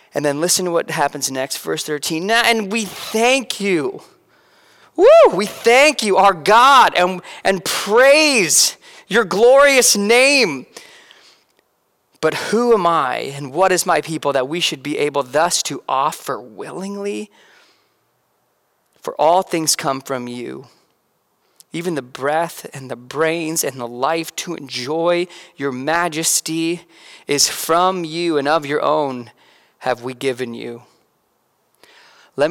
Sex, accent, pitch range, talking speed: male, American, 135-190 Hz, 140 wpm